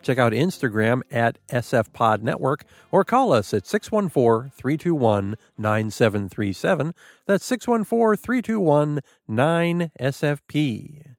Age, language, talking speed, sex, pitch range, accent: 50-69, English, 65 wpm, male, 120-185 Hz, American